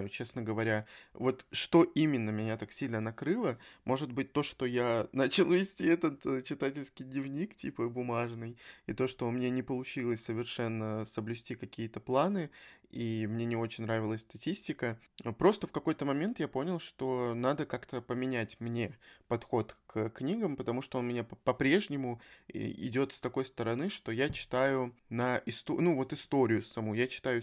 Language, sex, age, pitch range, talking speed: Russian, male, 20-39, 115-135 Hz, 165 wpm